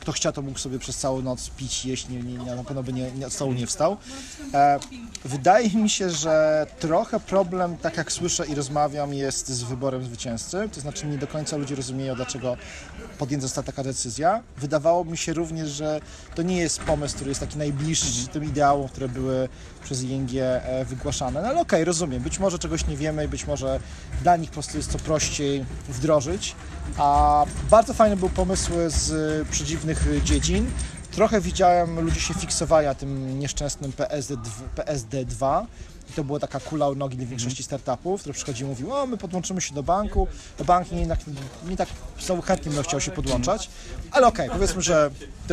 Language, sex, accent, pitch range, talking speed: Polish, male, native, 135-170 Hz, 190 wpm